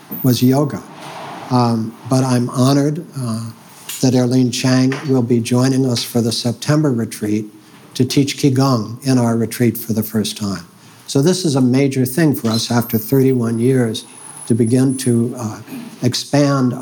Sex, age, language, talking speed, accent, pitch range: male, 60-79, English, 155 wpm, American, 115-135 Hz